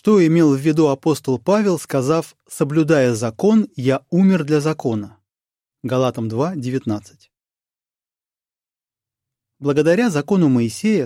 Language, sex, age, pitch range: Russian, male, 30-49, 120-165 Hz